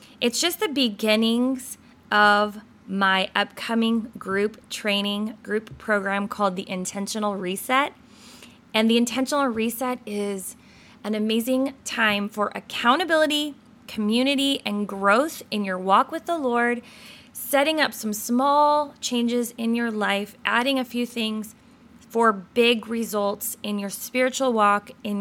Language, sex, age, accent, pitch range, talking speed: English, female, 20-39, American, 210-260 Hz, 130 wpm